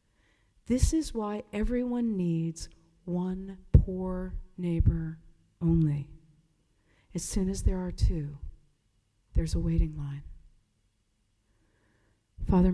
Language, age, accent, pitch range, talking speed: English, 50-69, American, 140-185 Hz, 95 wpm